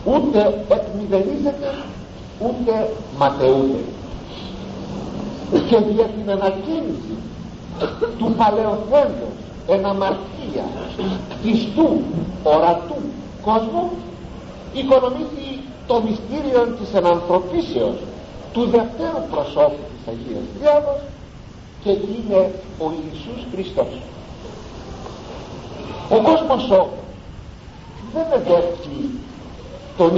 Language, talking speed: Greek, 75 wpm